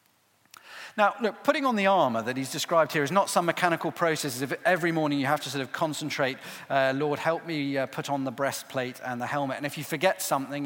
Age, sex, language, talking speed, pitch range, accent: 40-59, male, English, 225 wpm, 130-170 Hz, British